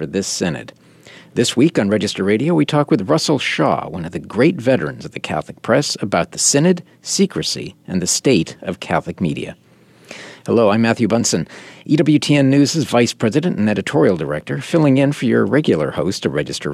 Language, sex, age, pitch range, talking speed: English, male, 50-69, 105-155 Hz, 180 wpm